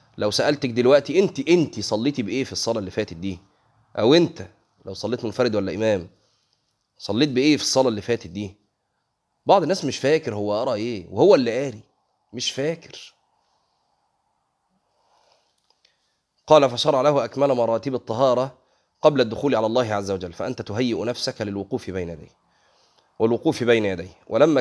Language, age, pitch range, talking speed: Arabic, 30-49, 100-135 Hz, 145 wpm